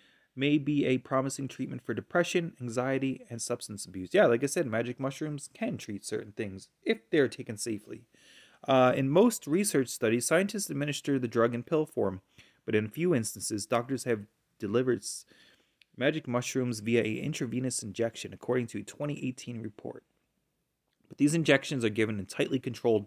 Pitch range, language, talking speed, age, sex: 115-145 Hz, English, 170 wpm, 30-49, male